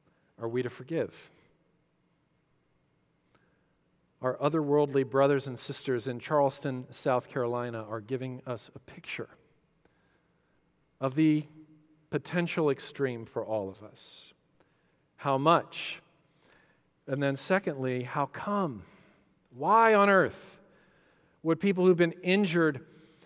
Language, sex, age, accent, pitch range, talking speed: English, male, 40-59, American, 145-200 Hz, 105 wpm